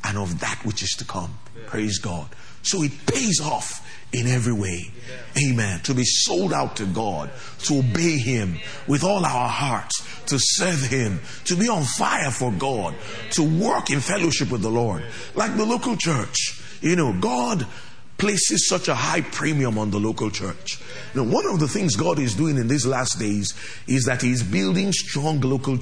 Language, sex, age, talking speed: English, male, 30-49, 190 wpm